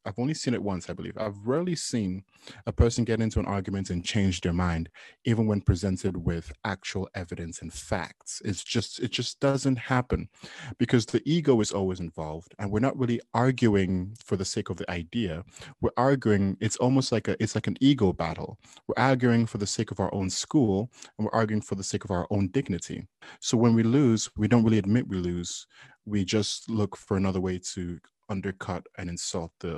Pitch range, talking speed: 95-120 Hz, 205 wpm